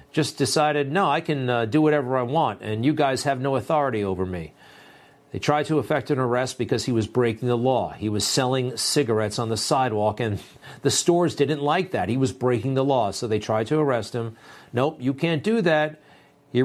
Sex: male